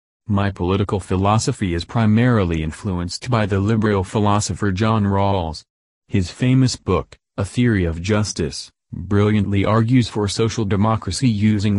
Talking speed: 125 wpm